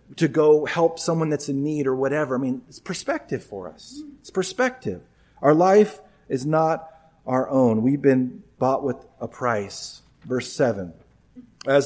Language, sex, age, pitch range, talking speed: English, male, 40-59, 130-170 Hz, 160 wpm